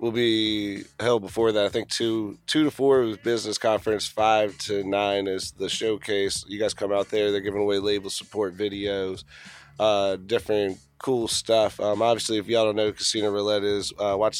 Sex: male